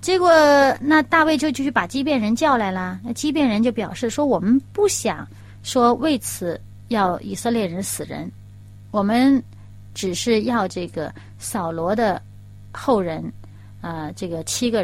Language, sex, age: Chinese, female, 30-49